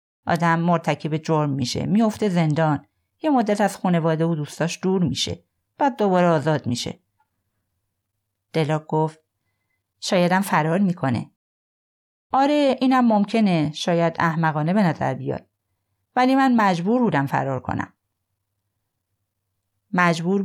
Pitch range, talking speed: 125-190 Hz, 110 wpm